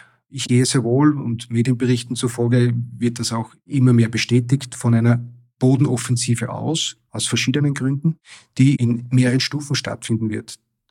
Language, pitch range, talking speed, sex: German, 115-135 Hz, 145 wpm, male